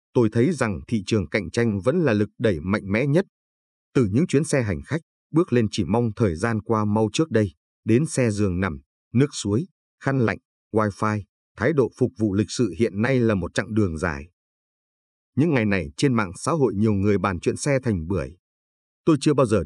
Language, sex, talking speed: Vietnamese, male, 215 wpm